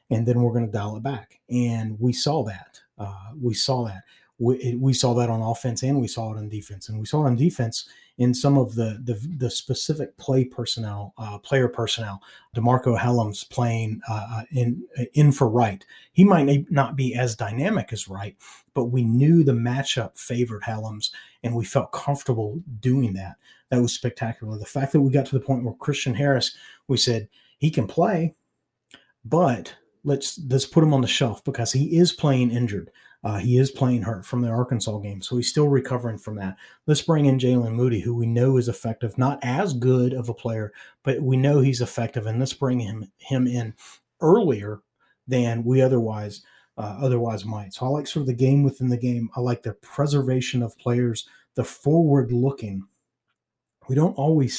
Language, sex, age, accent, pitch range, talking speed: English, male, 30-49, American, 115-135 Hz, 195 wpm